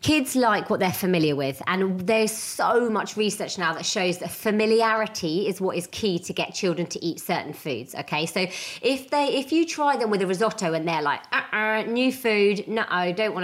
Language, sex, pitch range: English, female, 185-235 Hz